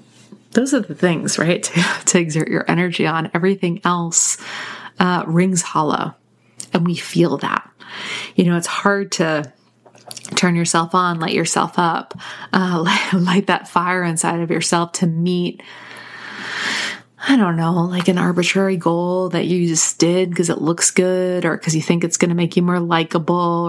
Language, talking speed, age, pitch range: English, 165 wpm, 30-49, 165-195 Hz